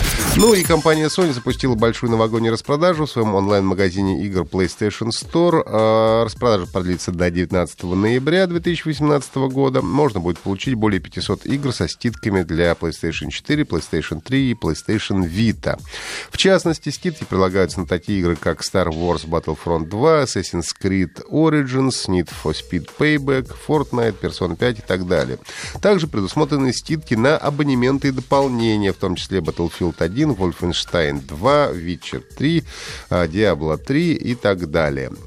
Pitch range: 85-135 Hz